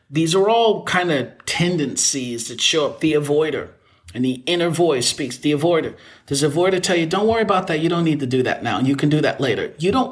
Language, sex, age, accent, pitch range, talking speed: English, male, 40-59, American, 120-155 Hz, 250 wpm